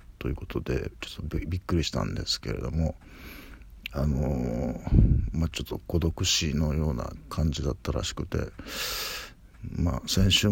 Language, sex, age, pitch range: Japanese, male, 60-79, 75-95 Hz